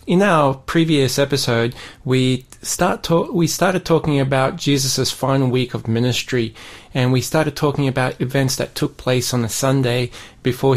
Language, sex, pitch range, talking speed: English, male, 125-150 Hz, 160 wpm